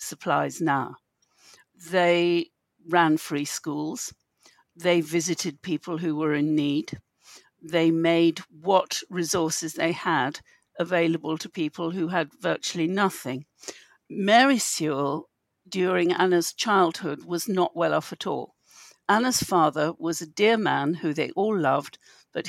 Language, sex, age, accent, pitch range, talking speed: English, female, 60-79, British, 165-210 Hz, 130 wpm